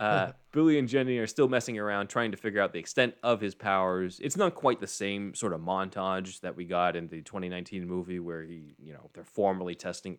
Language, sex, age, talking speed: English, male, 20-39, 230 wpm